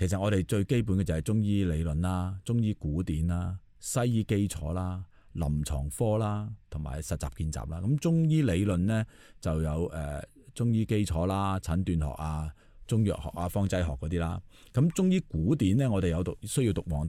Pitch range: 80-105 Hz